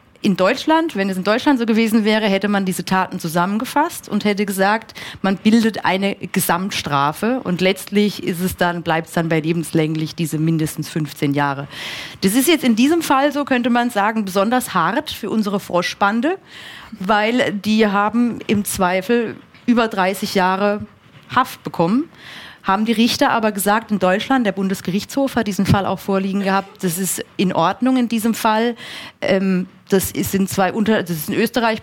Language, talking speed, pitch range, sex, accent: German, 165 wpm, 165-215 Hz, female, German